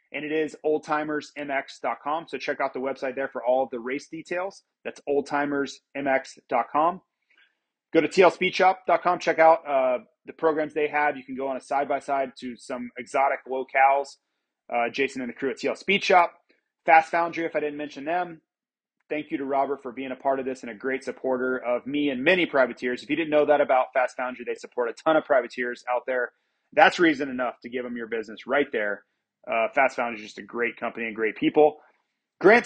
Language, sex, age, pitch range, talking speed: English, male, 30-49, 130-165 Hz, 200 wpm